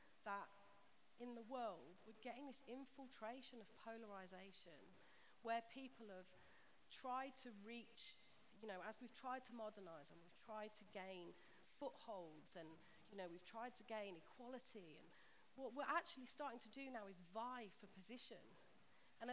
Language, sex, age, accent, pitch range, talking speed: English, female, 40-59, British, 200-250 Hz, 155 wpm